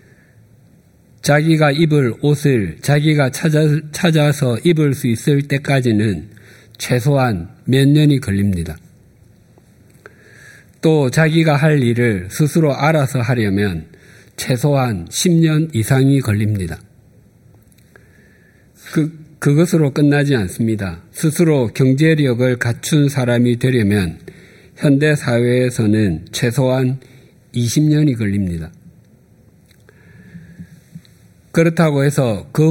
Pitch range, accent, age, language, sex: 110-145 Hz, native, 50-69, Korean, male